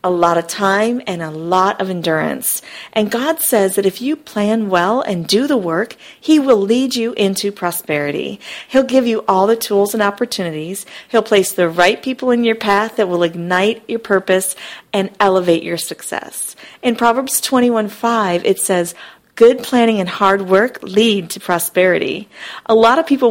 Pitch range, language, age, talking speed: 190-250 Hz, English, 40-59, 180 wpm